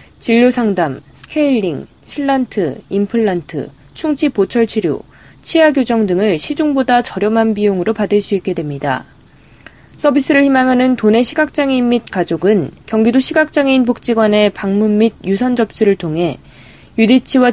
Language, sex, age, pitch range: Korean, female, 20-39, 205-260 Hz